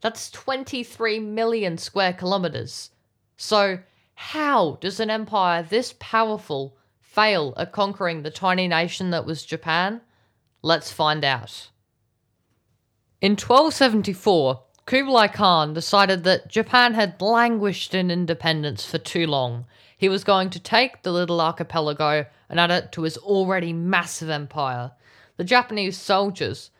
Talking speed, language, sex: 130 wpm, English, female